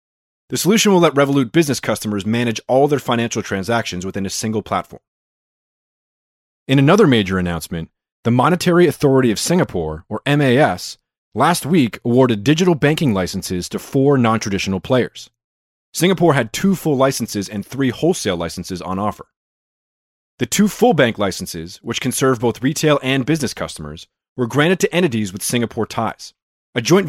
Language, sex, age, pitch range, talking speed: English, male, 30-49, 100-150 Hz, 155 wpm